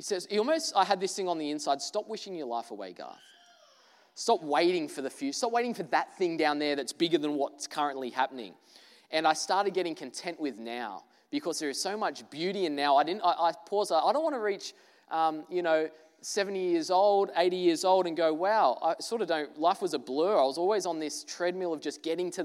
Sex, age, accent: male, 20-39, Australian